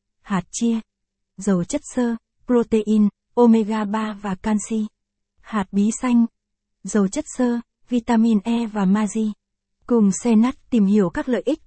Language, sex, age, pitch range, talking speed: Vietnamese, female, 20-39, 200-235 Hz, 145 wpm